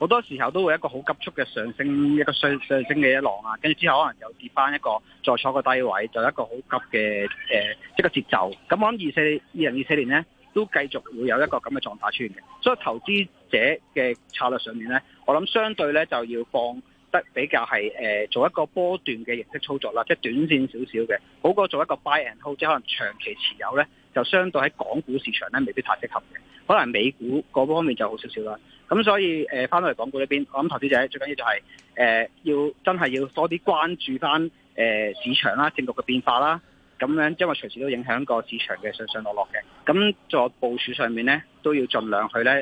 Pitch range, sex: 120-160 Hz, male